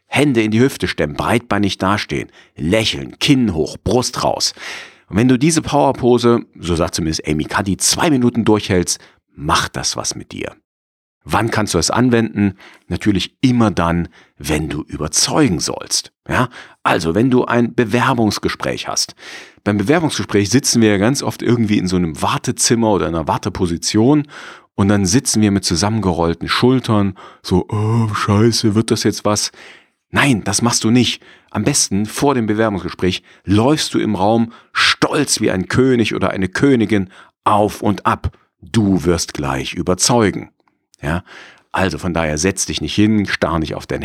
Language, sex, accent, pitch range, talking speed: German, male, German, 85-115 Hz, 160 wpm